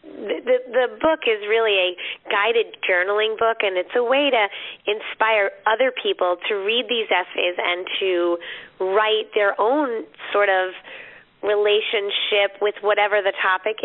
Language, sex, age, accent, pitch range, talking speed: English, female, 30-49, American, 185-245 Hz, 145 wpm